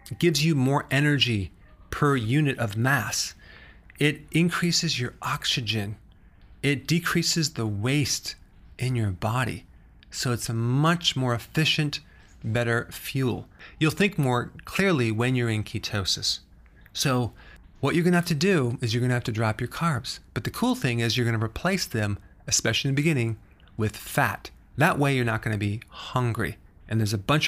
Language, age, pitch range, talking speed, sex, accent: English, 30-49, 110-145 Hz, 175 wpm, male, American